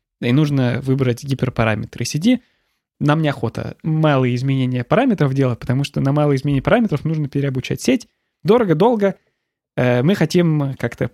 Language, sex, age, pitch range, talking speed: Russian, male, 20-39, 130-165 Hz, 130 wpm